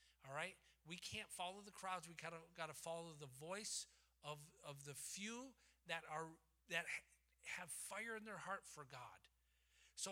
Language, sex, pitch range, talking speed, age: English, male, 145-195 Hz, 170 wpm, 50-69